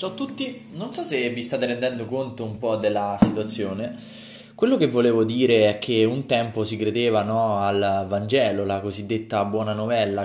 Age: 20-39